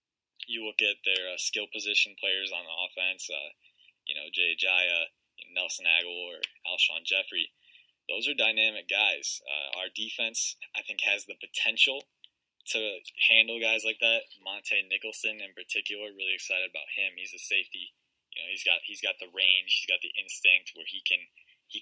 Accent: American